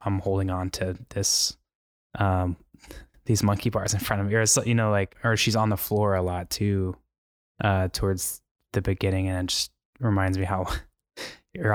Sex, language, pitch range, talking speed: male, English, 95-105 Hz, 190 wpm